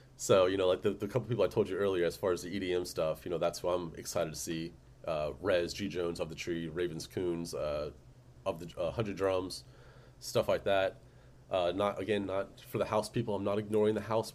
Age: 30-49